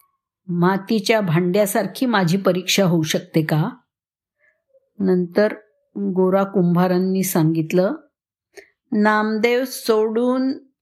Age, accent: 50-69, native